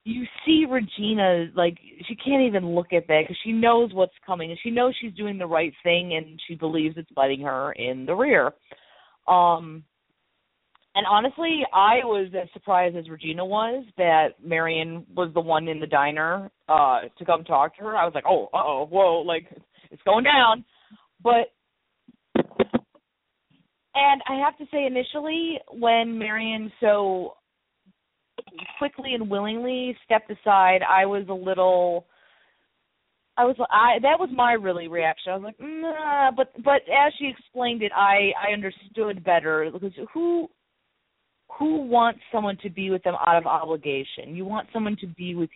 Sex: female